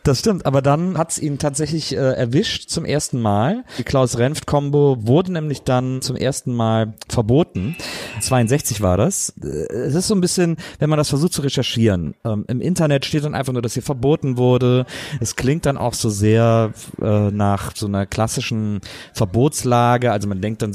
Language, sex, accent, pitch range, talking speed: German, male, German, 110-140 Hz, 180 wpm